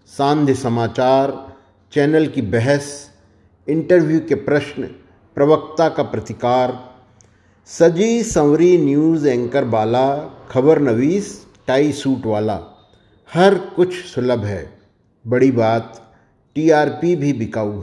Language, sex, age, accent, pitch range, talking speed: Hindi, male, 50-69, native, 110-145 Hz, 100 wpm